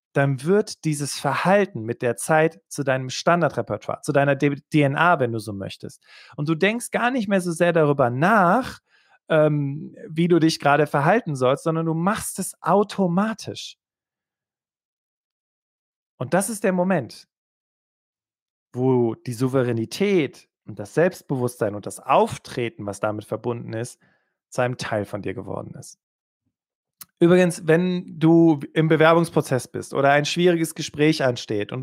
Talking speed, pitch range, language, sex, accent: 145 wpm, 135-175 Hz, German, male, German